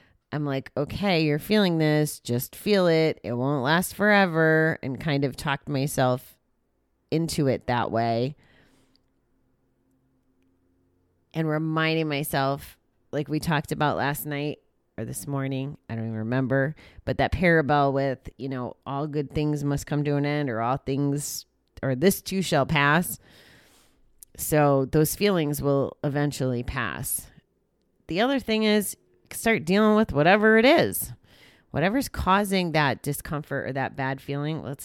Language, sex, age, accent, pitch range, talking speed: English, female, 30-49, American, 130-160 Hz, 145 wpm